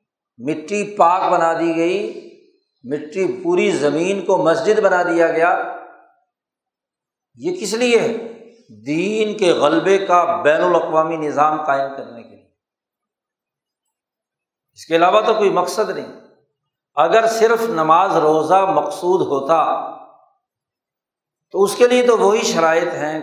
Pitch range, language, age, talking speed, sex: 165-225 Hz, Urdu, 60-79, 125 wpm, male